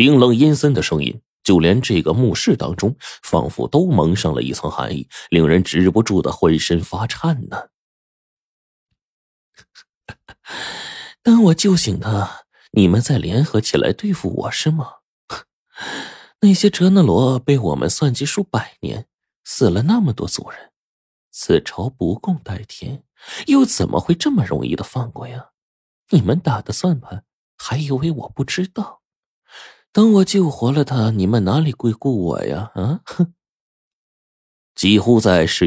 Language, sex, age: Chinese, male, 30-49